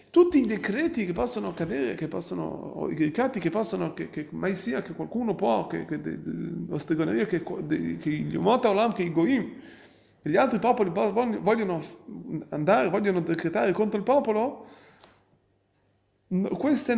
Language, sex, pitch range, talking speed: Italian, male, 185-255 Hz, 160 wpm